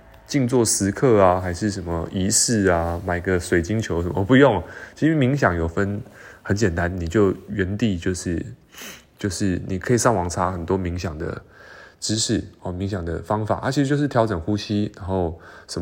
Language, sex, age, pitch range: Chinese, male, 20-39, 90-115 Hz